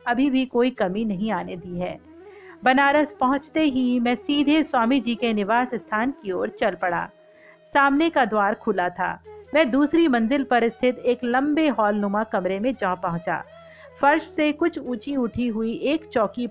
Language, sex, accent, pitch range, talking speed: Hindi, female, native, 210-300 Hz, 175 wpm